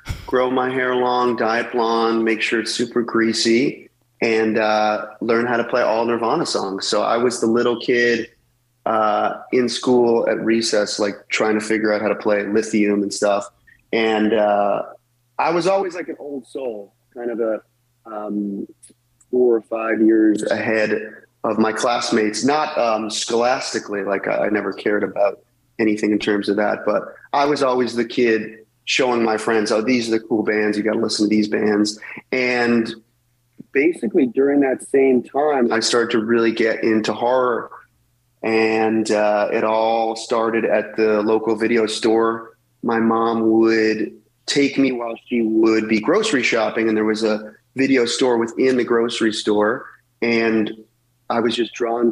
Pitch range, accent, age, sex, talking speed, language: 110-120 Hz, American, 30-49, male, 170 wpm, English